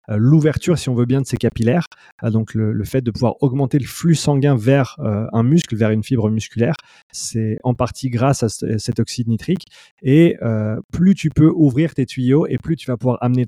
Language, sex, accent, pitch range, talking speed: French, male, French, 110-135 Hz, 215 wpm